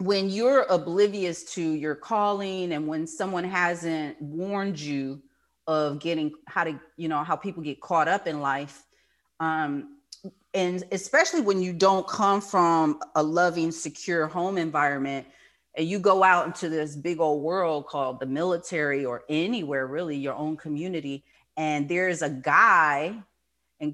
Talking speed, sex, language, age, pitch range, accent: 155 wpm, female, English, 40-59, 150-185 Hz, American